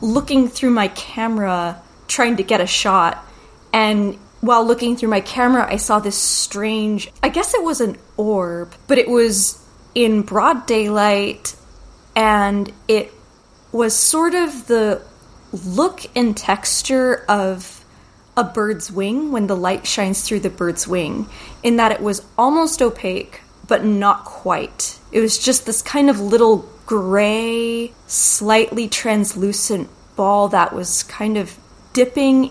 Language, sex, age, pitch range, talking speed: English, female, 20-39, 200-240 Hz, 140 wpm